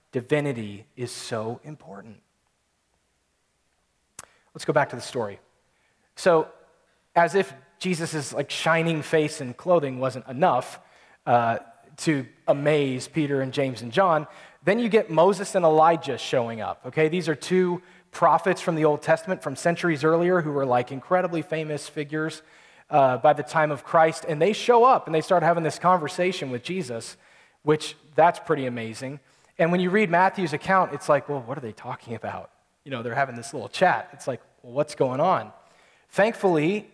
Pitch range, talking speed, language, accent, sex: 130-175 Hz, 170 wpm, English, American, male